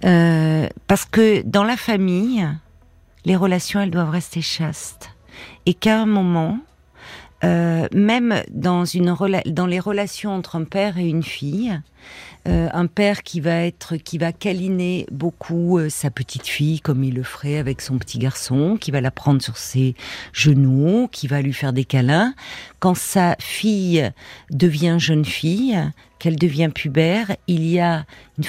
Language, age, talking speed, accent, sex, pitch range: French, 50-69, 160 wpm, French, female, 140-180 Hz